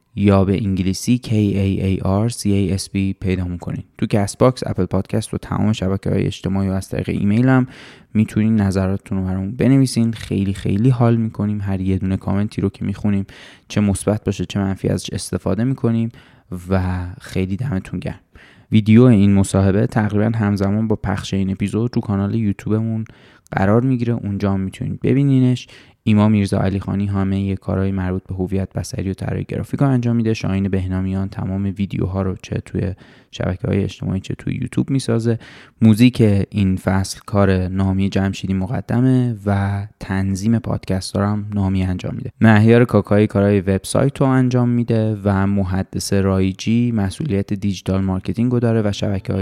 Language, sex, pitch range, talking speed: Persian, male, 95-115 Hz, 165 wpm